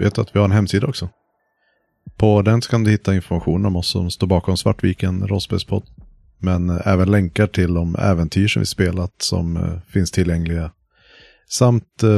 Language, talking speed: Swedish, 165 wpm